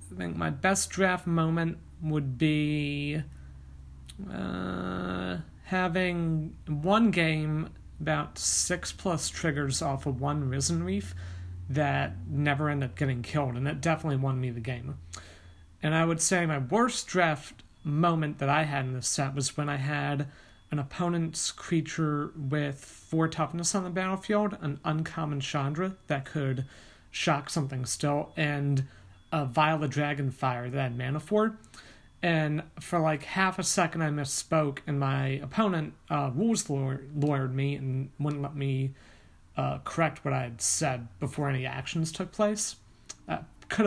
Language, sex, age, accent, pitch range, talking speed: English, male, 40-59, American, 130-165 Hz, 155 wpm